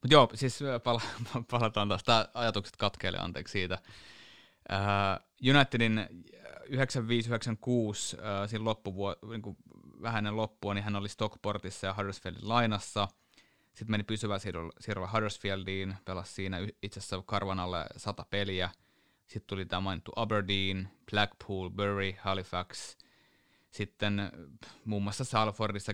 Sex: male